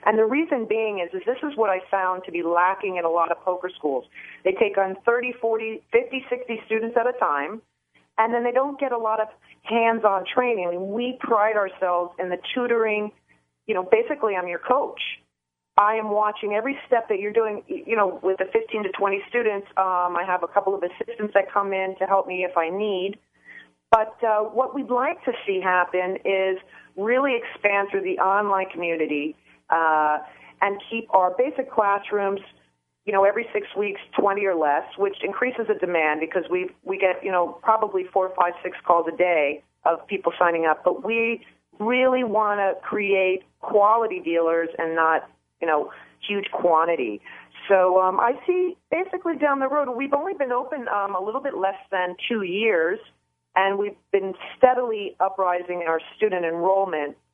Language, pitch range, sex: English, 180-230 Hz, female